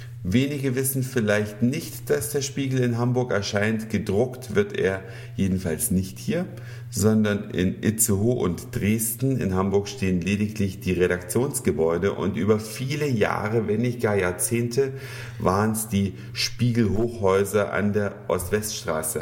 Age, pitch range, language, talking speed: 50-69, 100-120 Hz, German, 135 wpm